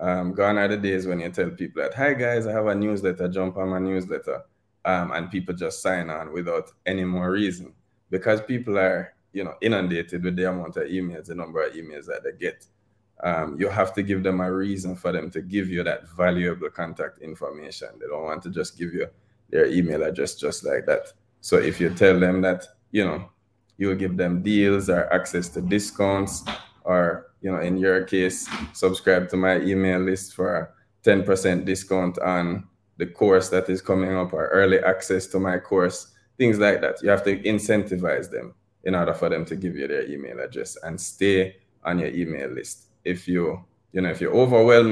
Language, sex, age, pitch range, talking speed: English, male, 20-39, 90-105 Hz, 205 wpm